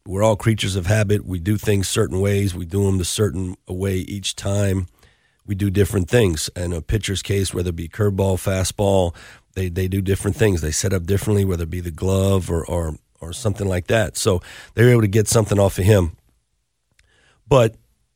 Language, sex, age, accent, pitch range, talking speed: English, male, 40-59, American, 90-105 Hz, 205 wpm